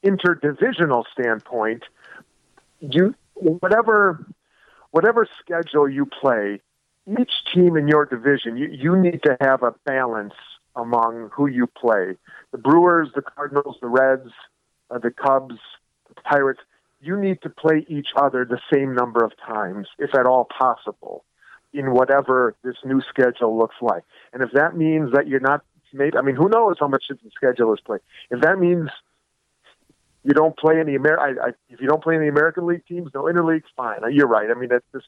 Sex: male